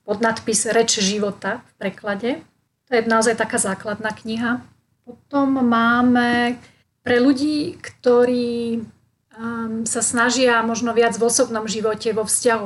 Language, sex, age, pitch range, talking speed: Slovak, female, 30-49, 225-255 Hz, 125 wpm